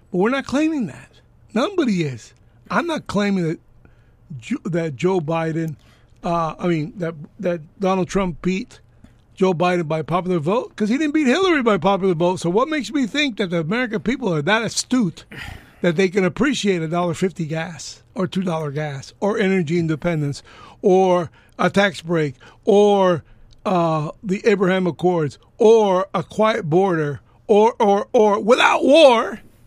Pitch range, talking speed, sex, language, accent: 165-220 Hz, 160 wpm, male, English, American